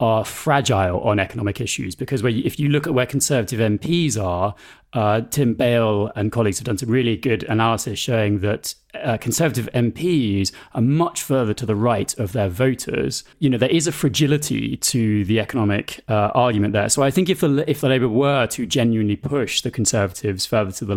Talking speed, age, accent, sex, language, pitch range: 190 wpm, 30-49, British, male, English, 105-140 Hz